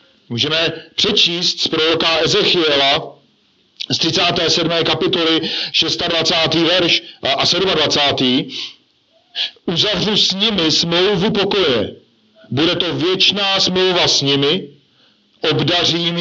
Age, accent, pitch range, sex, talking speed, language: 50-69, native, 150-190 Hz, male, 90 wpm, Czech